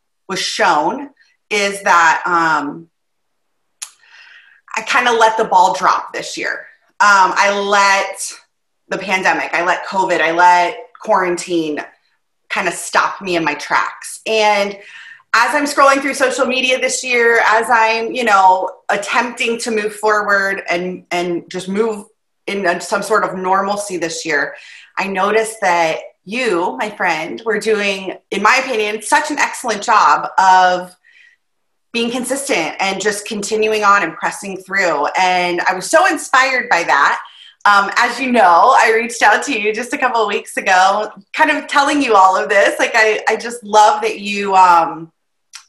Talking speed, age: 160 wpm, 30-49